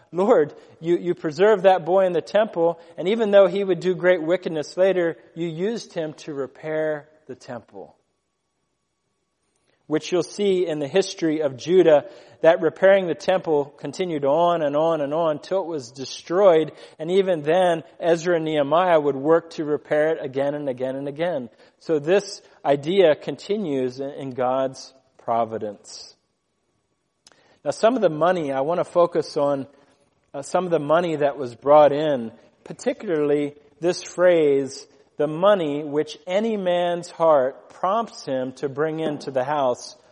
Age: 40-59